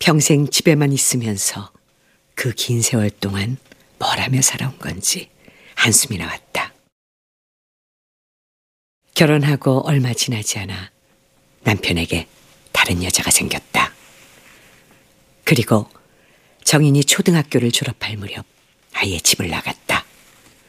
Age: 50-69